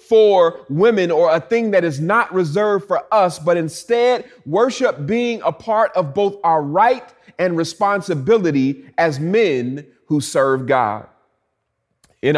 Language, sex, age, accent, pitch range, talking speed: English, male, 30-49, American, 150-210 Hz, 140 wpm